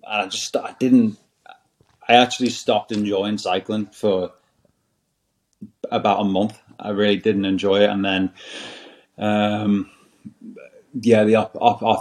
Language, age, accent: English, 30-49, British